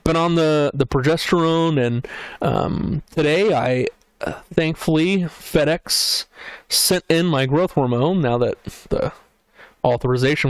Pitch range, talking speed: 130-155 Hz, 120 wpm